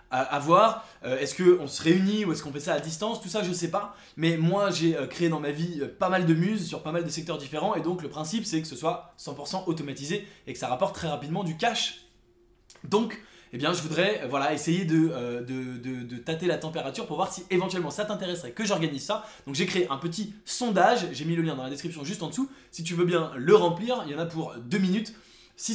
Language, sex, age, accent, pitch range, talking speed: English, male, 20-39, French, 150-190 Hz, 250 wpm